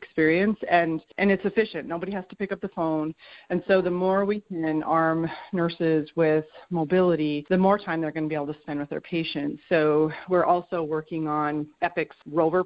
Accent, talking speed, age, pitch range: American, 200 wpm, 30-49, 150-170 Hz